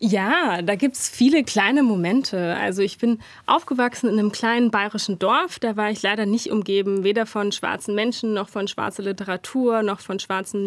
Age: 20-39